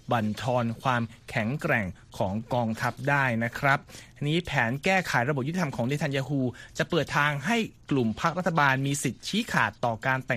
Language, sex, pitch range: Thai, male, 120-165 Hz